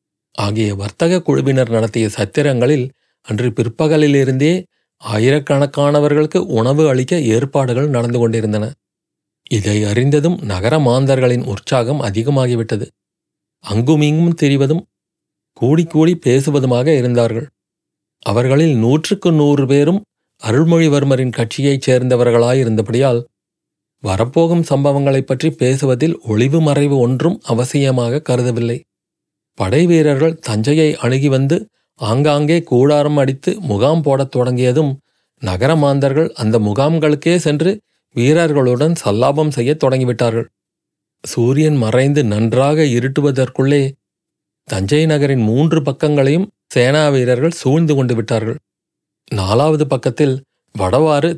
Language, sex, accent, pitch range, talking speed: Tamil, male, native, 120-155 Hz, 90 wpm